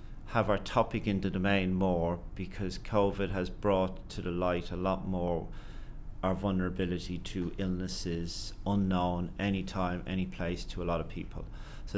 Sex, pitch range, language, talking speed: male, 90-105 Hz, English, 155 wpm